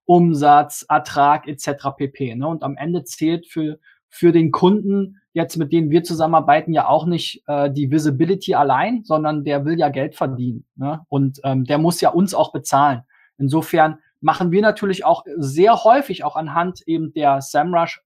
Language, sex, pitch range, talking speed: German, male, 150-180 Hz, 175 wpm